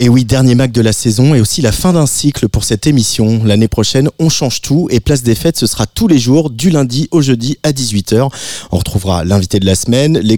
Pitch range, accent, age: 110-130 Hz, French, 30-49